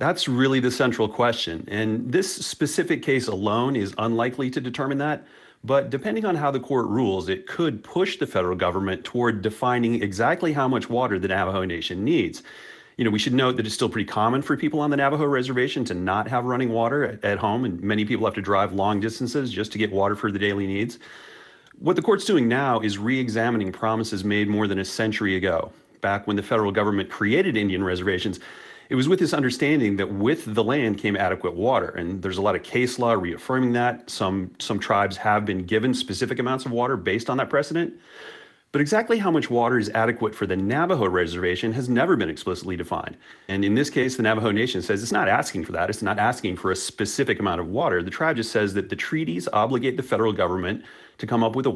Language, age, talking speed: English, 40-59, 220 wpm